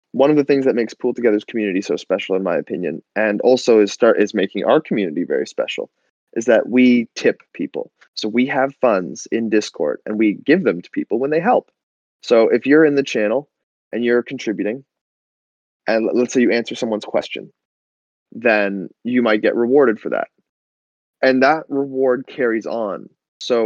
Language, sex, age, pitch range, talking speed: English, male, 20-39, 100-135 Hz, 185 wpm